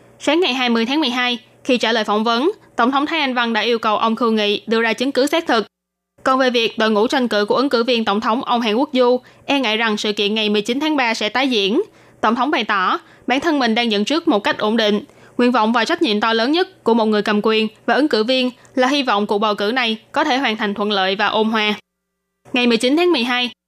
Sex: female